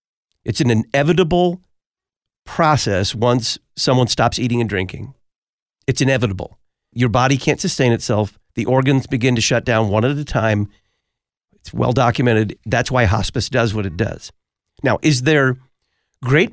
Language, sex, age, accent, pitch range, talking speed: English, male, 50-69, American, 110-140 Hz, 145 wpm